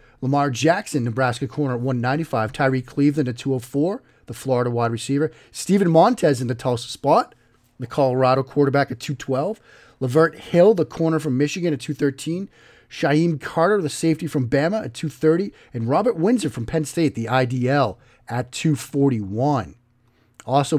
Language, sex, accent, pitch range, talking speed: English, male, American, 125-160 Hz, 150 wpm